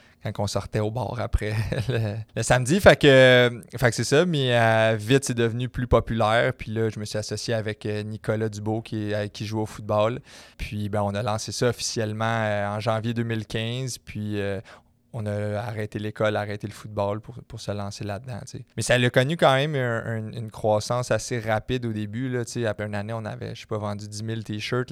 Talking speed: 205 wpm